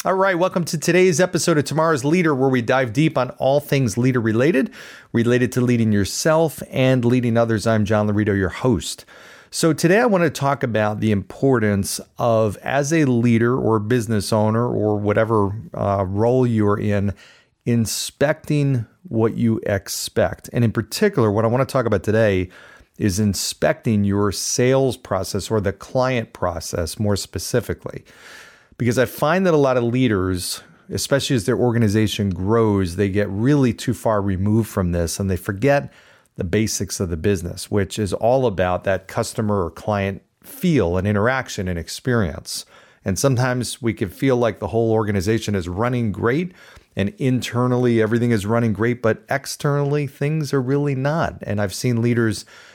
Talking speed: 170 wpm